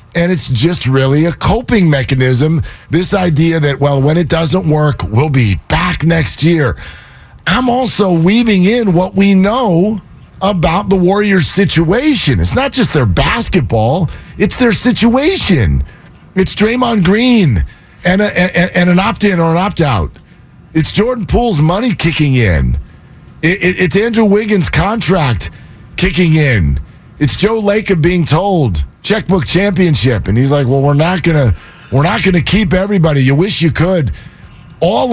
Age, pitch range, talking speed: 50-69, 140-200 Hz, 145 wpm